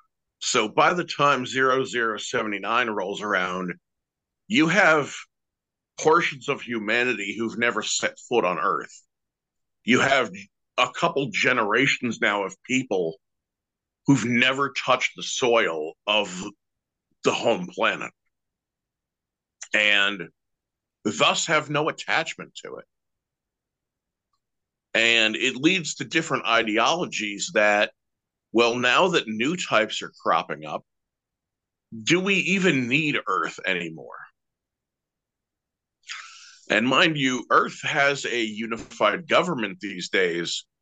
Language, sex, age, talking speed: English, male, 50-69, 105 wpm